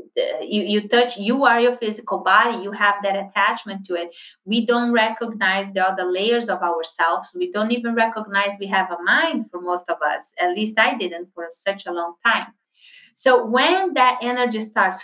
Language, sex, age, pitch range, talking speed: English, female, 30-49, 200-280 Hz, 195 wpm